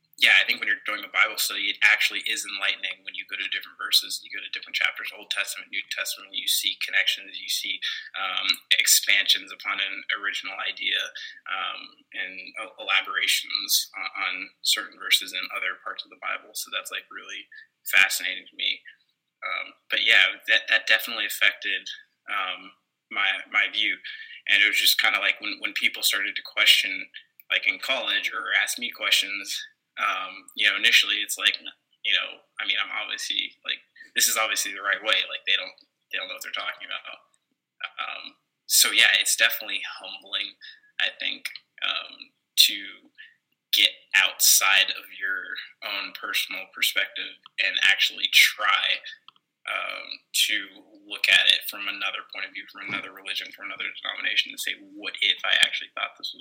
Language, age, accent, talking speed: English, 20-39, American, 175 wpm